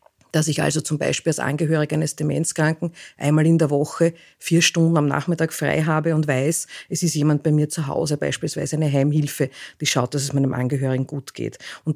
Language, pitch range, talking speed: German, 150-170 Hz, 200 wpm